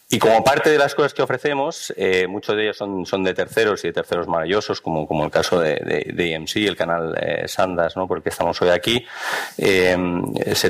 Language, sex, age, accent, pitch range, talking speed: Spanish, male, 30-49, Spanish, 90-105 Hz, 220 wpm